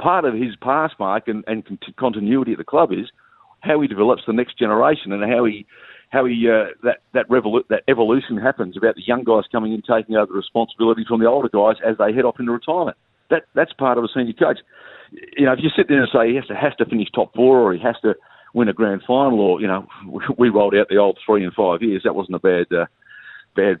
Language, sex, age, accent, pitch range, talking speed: English, male, 50-69, Australian, 110-130 Hz, 250 wpm